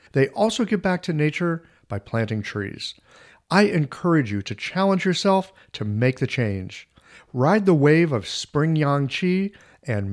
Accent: American